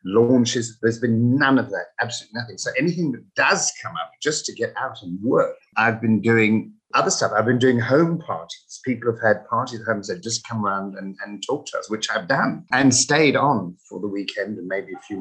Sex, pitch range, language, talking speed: male, 110-135 Hz, English, 230 wpm